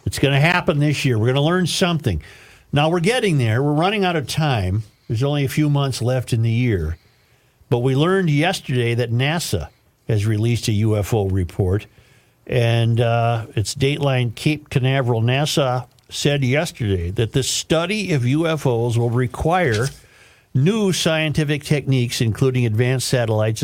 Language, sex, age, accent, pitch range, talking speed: English, male, 50-69, American, 115-150 Hz, 155 wpm